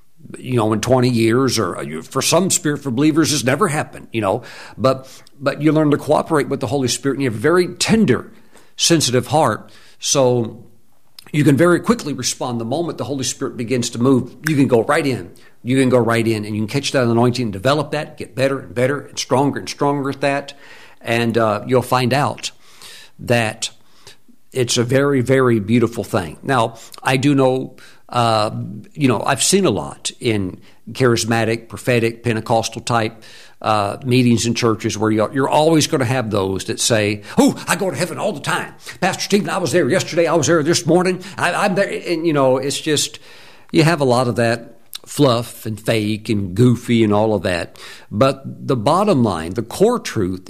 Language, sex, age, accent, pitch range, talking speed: English, male, 50-69, American, 115-145 Hz, 200 wpm